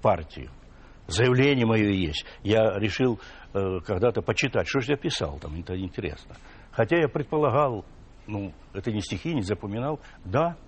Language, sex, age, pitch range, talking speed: Russian, male, 60-79, 95-135 Hz, 145 wpm